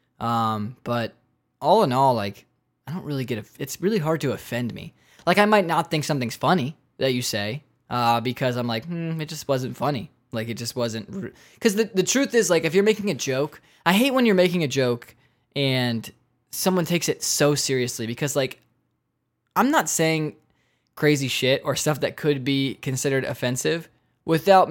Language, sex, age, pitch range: English, male, 10-29, 120-155 Hz